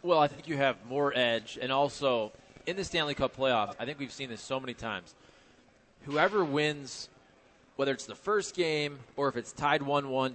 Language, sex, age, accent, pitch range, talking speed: English, male, 20-39, American, 125-145 Hz, 195 wpm